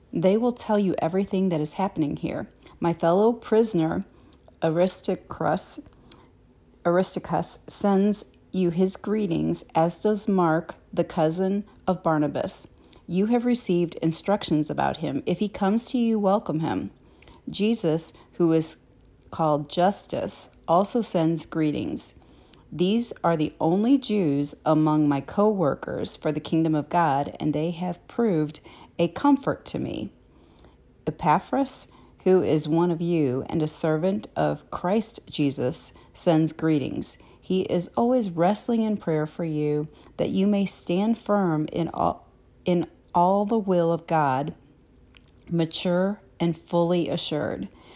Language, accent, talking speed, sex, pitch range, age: English, American, 130 wpm, female, 155-200 Hz, 40-59